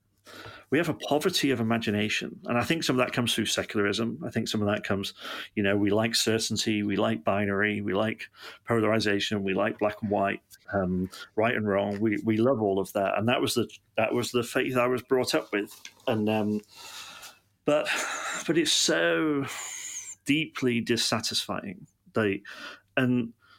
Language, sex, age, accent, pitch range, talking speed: English, male, 40-59, British, 105-125 Hz, 180 wpm